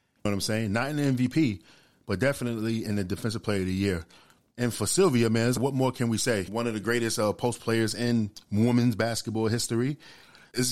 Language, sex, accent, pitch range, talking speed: English, male, American, 100-120 Hz, 205 wpm